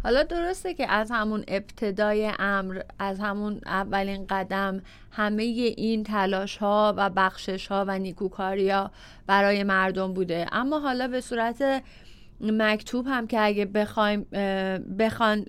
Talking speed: 130 wpm